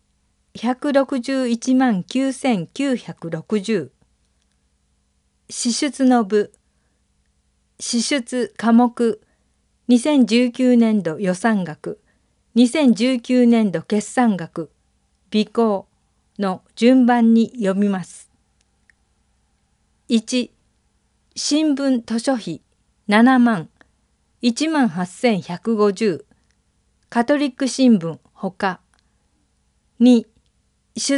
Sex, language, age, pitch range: female, Japanese, 50-69, 165-250 Hz